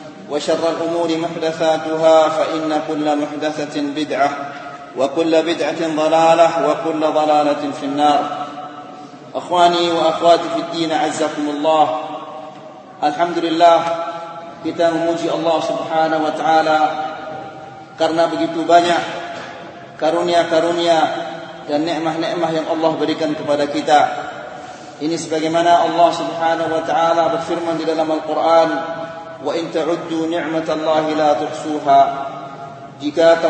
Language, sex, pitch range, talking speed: Indonesian, male, 155-170 Hz, 90 wpm